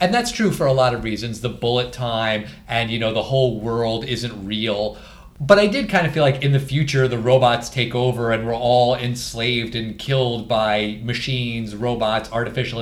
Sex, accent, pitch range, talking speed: male, American, 115-165 Hz, 200 wpm